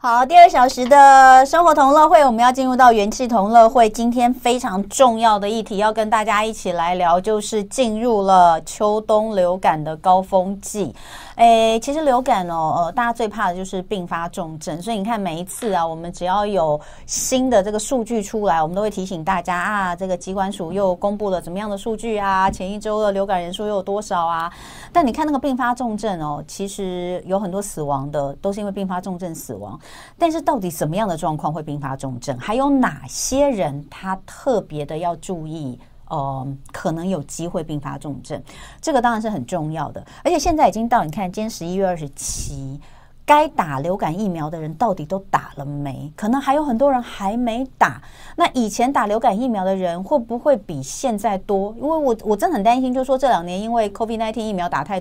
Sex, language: female, Chinese